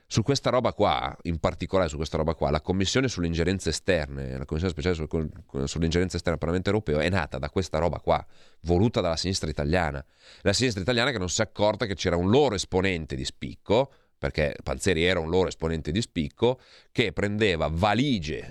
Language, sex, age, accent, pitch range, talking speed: Italian, male, 30-49, native, 80-100 Hz, 190 wpm